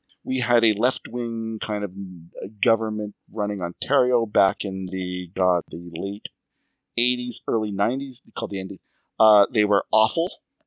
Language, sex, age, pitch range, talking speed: English, male, 40-59, 105-135 Hz, 140 wpm